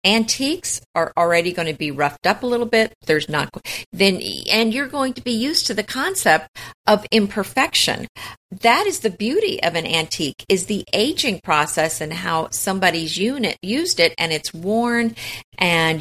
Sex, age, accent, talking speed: female, 50-69, American, 170 wpm